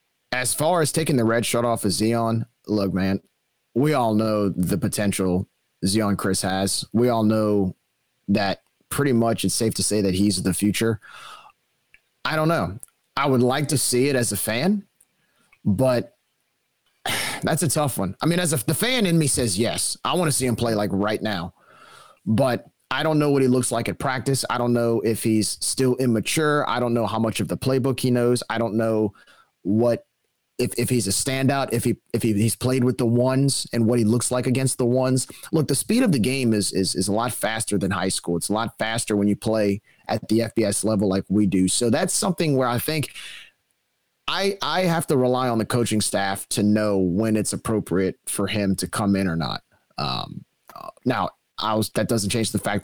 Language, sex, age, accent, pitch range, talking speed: English, male, 30-49, American, 105-130 Hz, 215 wpm